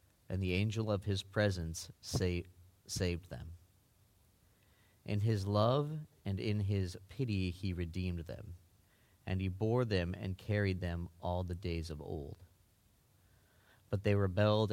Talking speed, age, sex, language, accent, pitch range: 135 wpm, 30-49, male, English, American, 90-100 Hz